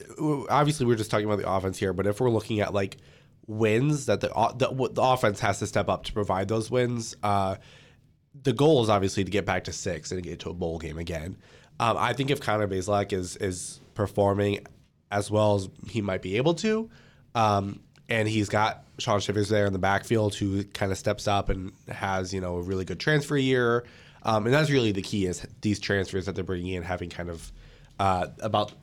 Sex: male